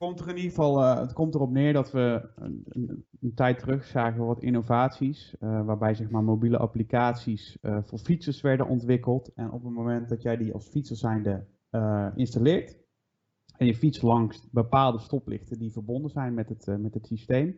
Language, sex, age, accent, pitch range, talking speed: Dutch, male, 30-49, Dutch, 110-135 Hz, 200 wpm